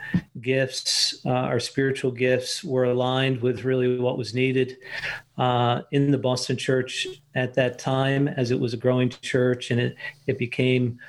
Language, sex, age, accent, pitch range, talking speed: English, male, 50-69, American, 125-140 Hz, 160 wpm